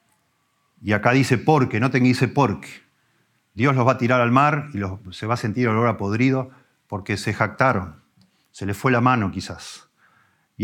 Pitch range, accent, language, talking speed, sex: 100-135 Hz, Argentinian, Spanish, 195 wpm, male